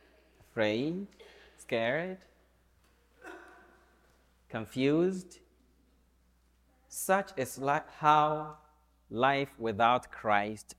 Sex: male